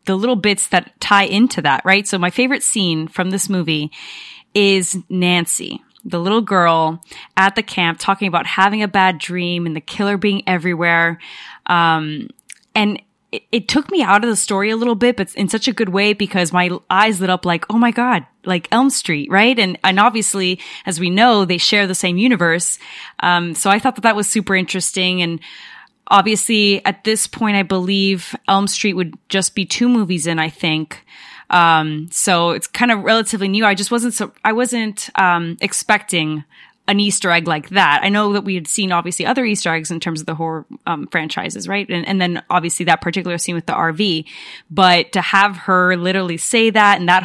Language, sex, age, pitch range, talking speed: English, female, 20-39, 175-210 Hz, 205 wpm